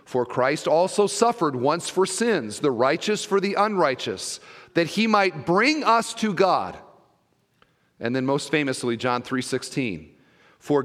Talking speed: 150 wpm